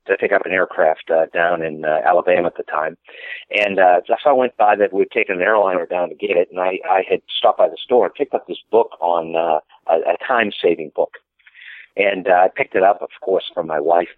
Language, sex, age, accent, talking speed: English, male, 50-69, American, 245 wpm